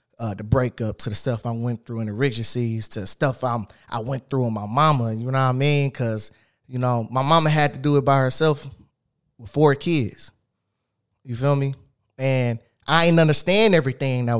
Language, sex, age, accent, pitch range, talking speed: English, male, 20-39, American, 120-150 Hz, 205 wpm